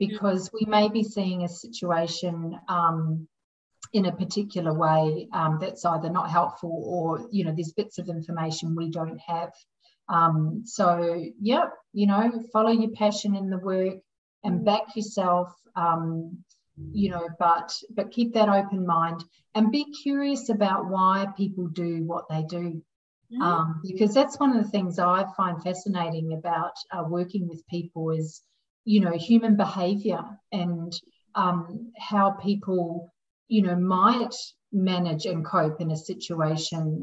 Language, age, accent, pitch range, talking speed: English, 40-59, Australian, 170-205 Hz, 150 wpm